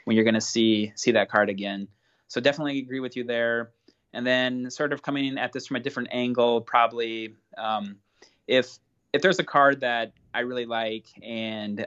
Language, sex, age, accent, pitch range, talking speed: English, male, 20-39, American, 110-125 Hz, 185 wpm